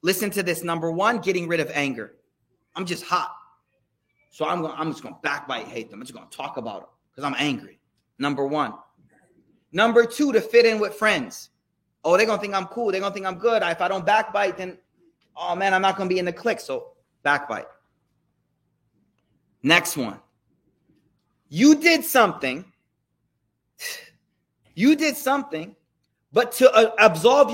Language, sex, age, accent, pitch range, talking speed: English, male, 30-49, American, 165-265 Hz, 180 wpm